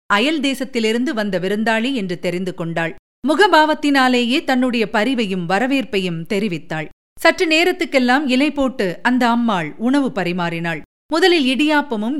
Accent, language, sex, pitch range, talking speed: native, Tamil, female, 195-285 Hz, 110 wpm